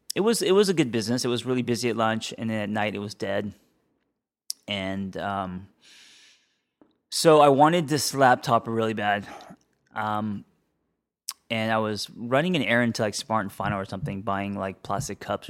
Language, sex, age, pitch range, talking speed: English, male, 20-39, 105-120 Hz, 180 wpm